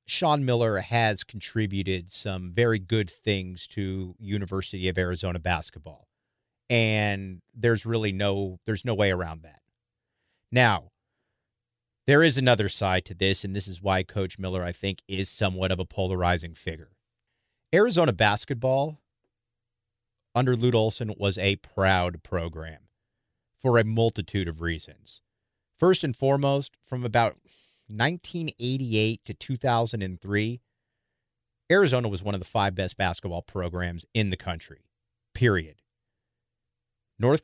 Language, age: English, 40-59